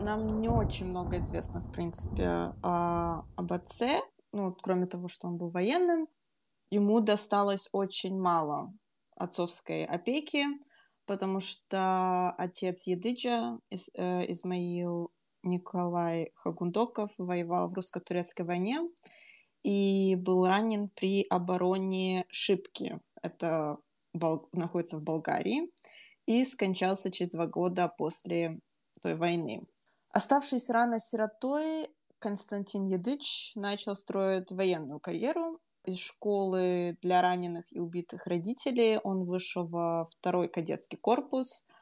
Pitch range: 175-205 Hz